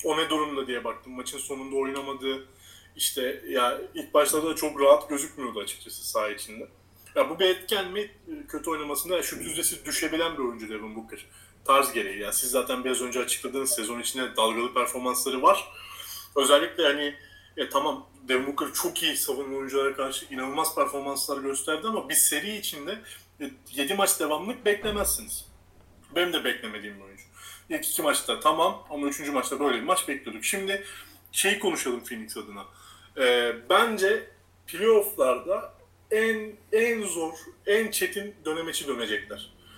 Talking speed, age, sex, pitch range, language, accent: 140 wpm, 30-49, male, 135-205 Hz, Turkish, native